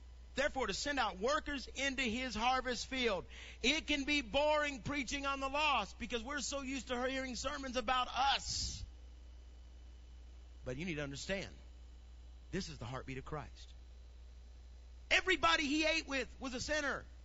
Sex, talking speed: male, 155 wpm